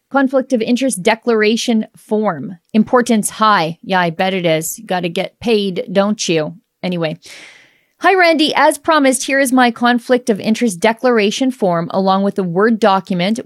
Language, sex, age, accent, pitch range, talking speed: English, female, 40-59, American, 185-245 Hz, 165 wpm